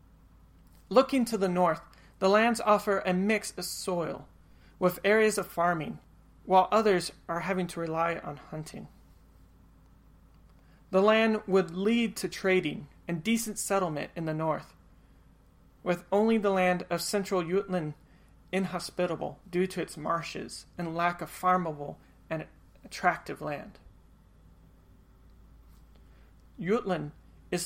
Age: 40-59